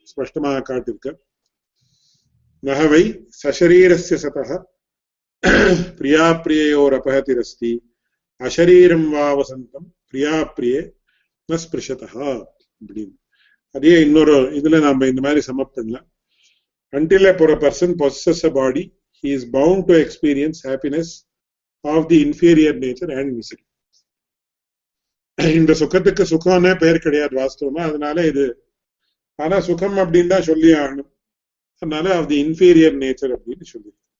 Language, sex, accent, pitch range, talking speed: English, male, Indian, 140-175 Hz, 105 wpm